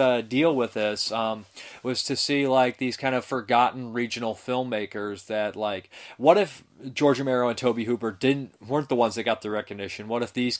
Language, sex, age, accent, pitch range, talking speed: English, male, 20-39, American, 105-125 Hz, 195 wpm